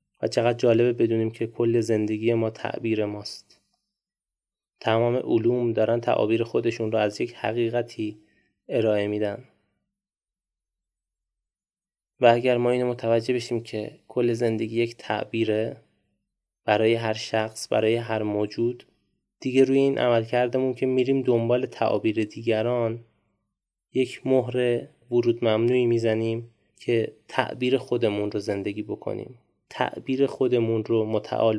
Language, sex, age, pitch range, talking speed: Persian, male, 20-39, 110-125 Hz, 120 wpm